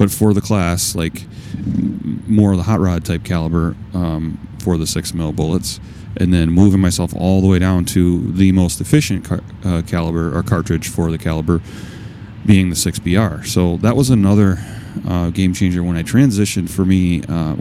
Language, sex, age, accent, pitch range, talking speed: English, male, 30-49, American, 85-105 Hz, 180 wpm